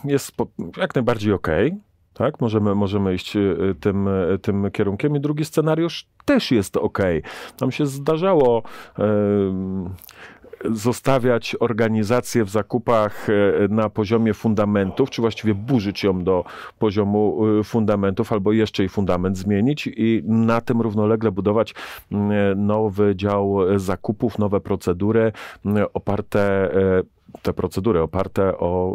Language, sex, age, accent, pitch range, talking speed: Polish, male, 40-59, native, 100-120 Hz, 110 wpm